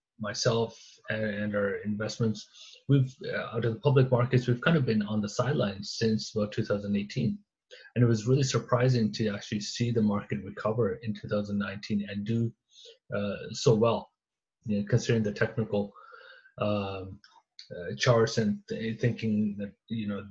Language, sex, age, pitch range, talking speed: English, male, 30-49, 105-120 Hz, 155 wpm